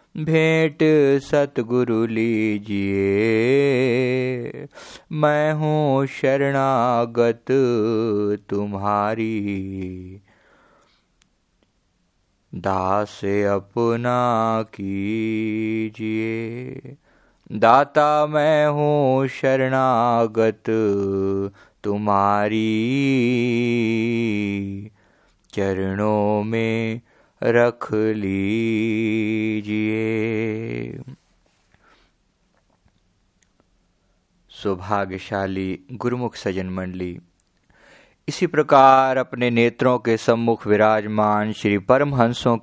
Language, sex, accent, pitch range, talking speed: Hindi, male, native, 100-125 Hz, 40 wpm